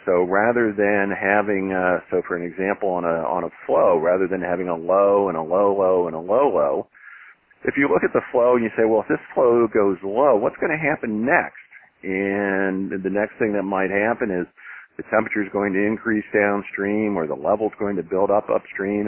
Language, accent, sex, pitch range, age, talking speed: English, American, male, 95-110 Hz, 50-69, 215 wpm